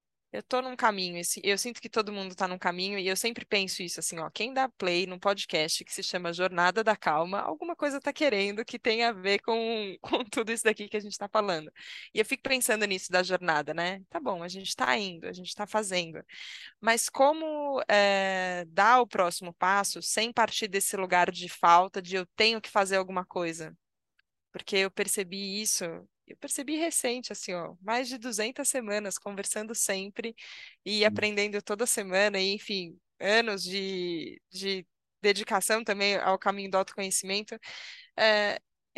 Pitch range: 190-240 Hz